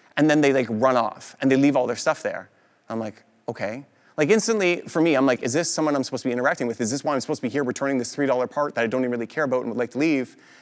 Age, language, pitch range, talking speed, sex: 30-49, English, 120-155 Hz, 310 wpm, male